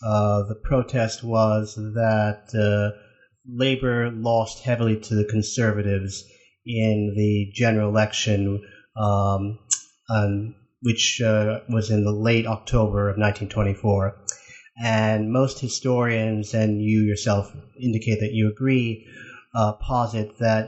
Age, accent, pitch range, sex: 30-49, American, 105-115 Hz, male